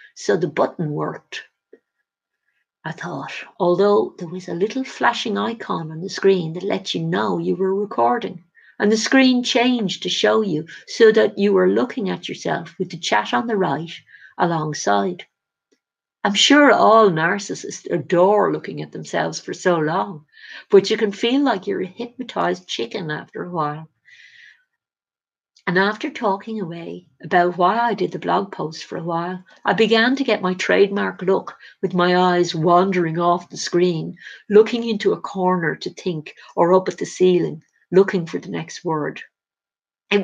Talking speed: 165 wpm